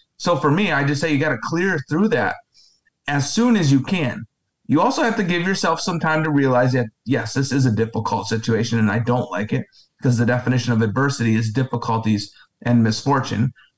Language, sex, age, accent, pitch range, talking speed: English, male, 30-49, American, 120-145 Hz, 210 wpm